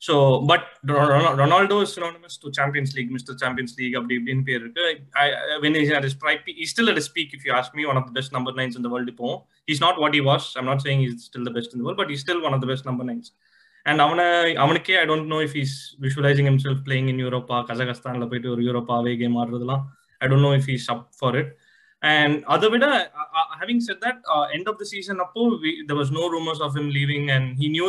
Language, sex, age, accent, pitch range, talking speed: Tamil, male, 20-39, native, 130-150 Hz, 235 wpm